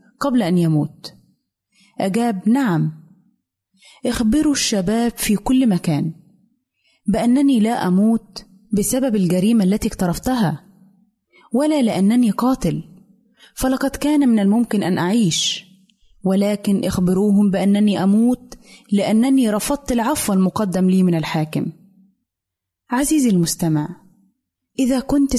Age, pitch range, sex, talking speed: 30-49, 195-240 Hz, female, 95 wpm